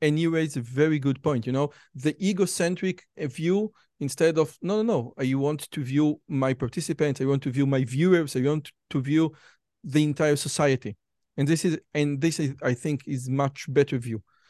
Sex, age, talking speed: male, 40-59, 195 wpm